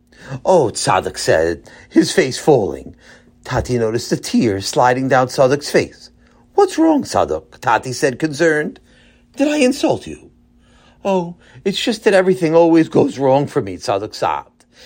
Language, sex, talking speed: English, male, 145 wpm